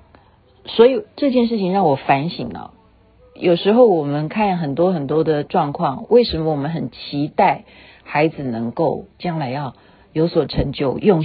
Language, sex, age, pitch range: Chinese, female, 50-69, 135-170 Hz